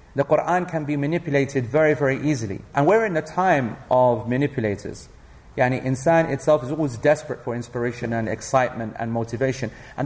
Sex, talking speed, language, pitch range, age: male, 165 wpm, English, 130-165 Hz, 40-59